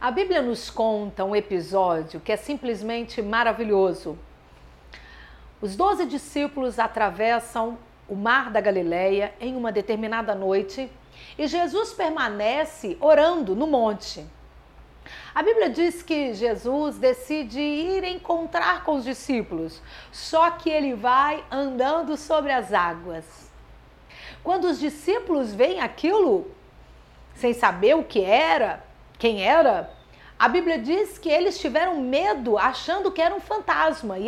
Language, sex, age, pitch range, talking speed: Portuguese, female, 50-69, 220-345 Hz, 125 wpm